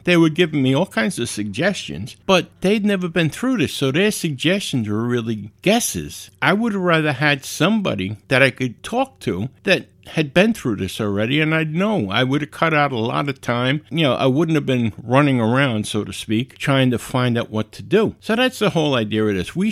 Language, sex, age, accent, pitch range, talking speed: English, male, 60-79, American, 105-160 Hz, 230 wpm